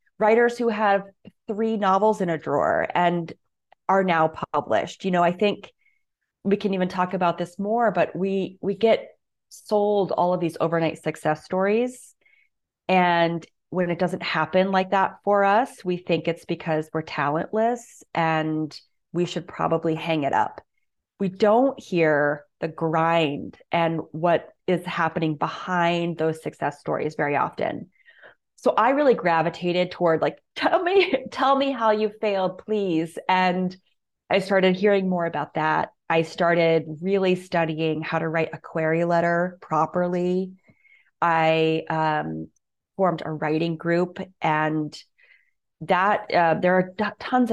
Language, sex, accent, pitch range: English, female, American, 165-200 Hz